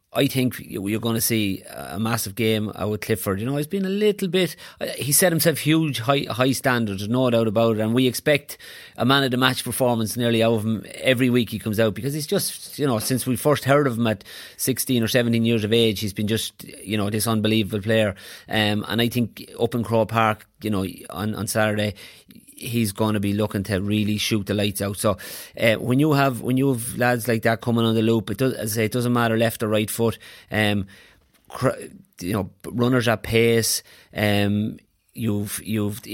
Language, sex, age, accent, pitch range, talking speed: English, male, 30-49, Irish, 110-130 Hz, 215 wpm